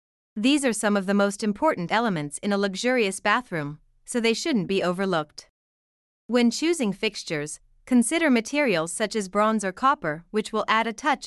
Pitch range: 180-235 Hz